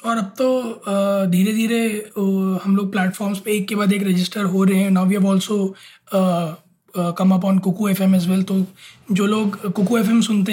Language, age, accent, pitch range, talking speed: Hindi, 20-39, native, 195-235 Hz, 195 wpm